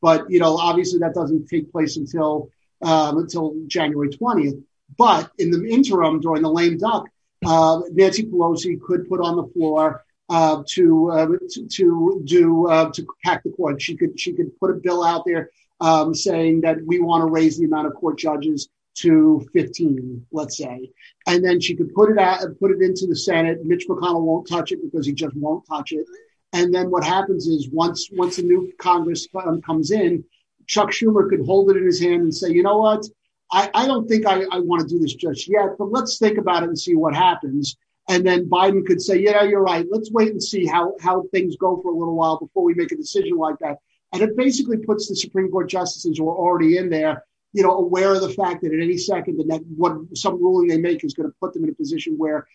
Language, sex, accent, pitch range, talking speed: English, male, American, 160-210 Hz, 230 wpm